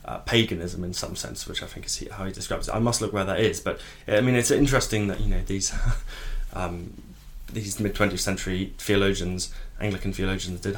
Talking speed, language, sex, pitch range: 200 wpm, English, male, 95-110 Hz